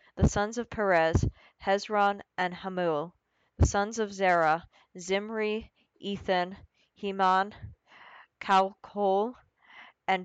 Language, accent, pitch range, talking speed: English, American, 175-205 Hz, 95 wpm